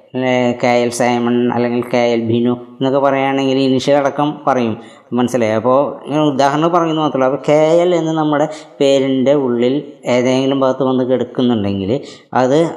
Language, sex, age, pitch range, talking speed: Malayalam, female, 20-39, 125-145 Hz, 120 wpm